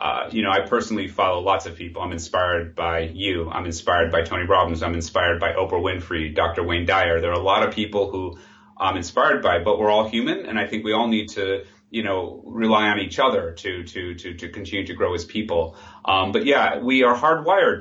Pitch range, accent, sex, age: 85-110 Hz, American, male, 30-49